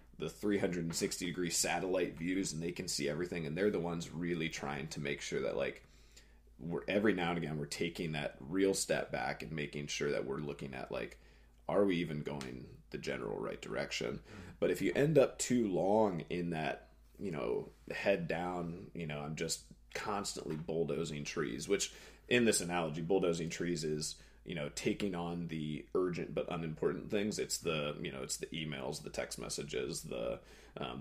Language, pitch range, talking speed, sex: English, 75-90 Hz, 190 wpm, male